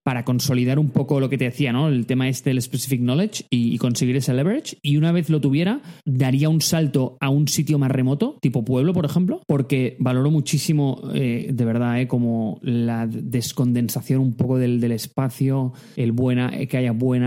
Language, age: Spanish, 20-39